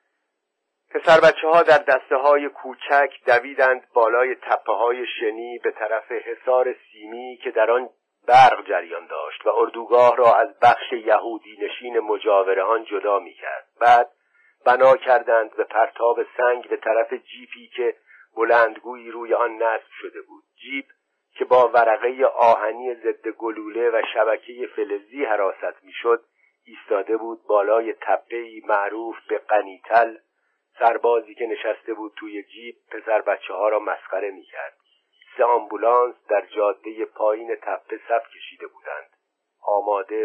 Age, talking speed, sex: 50-69, 135 wpm, male